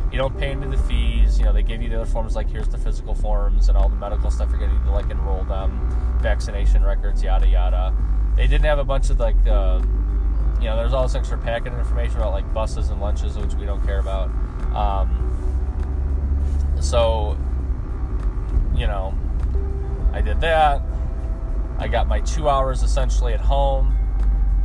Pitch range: 65-100 Hz